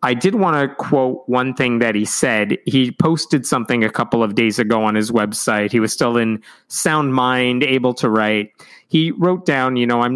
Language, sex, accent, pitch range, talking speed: English, male, American, 115-135 Hz, 215 wpm